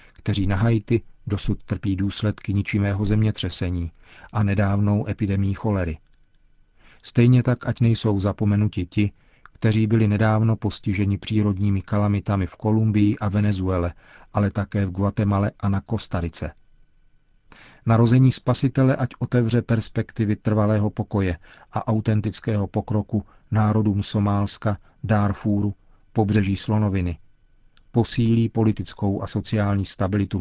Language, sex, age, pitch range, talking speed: Czech, male, 40-59, 100-110 Hz, 110 wpm